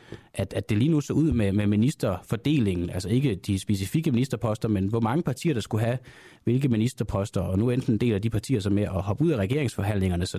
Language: Danish